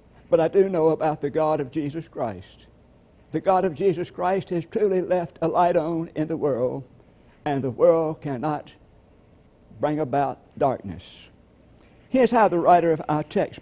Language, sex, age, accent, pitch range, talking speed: English, male, 60-79, American, 145-180 Hz, 165 wpm